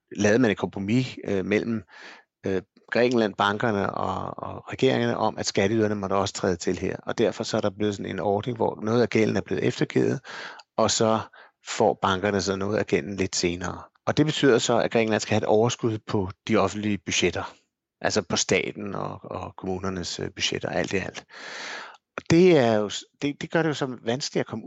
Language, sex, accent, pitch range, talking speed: Danish, male, native, 100-125 Hz, 200 wpm